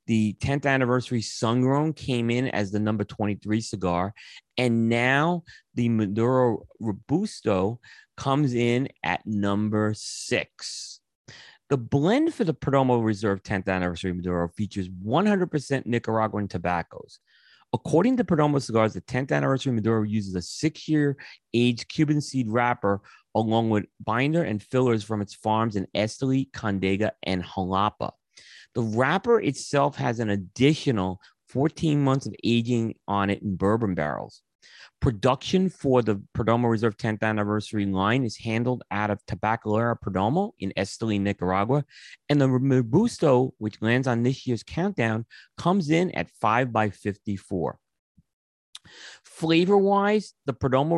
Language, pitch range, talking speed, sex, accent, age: English, 105-135 Hz, 135 wpm, male, American, 30-49